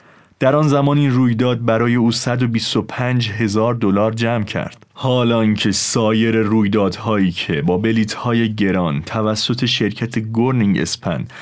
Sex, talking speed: male, 120 wpm